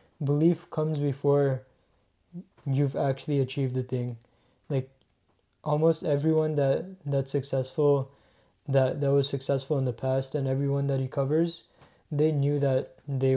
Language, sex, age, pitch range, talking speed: English, male, 20-39, 130-145 Hz, 135 wpm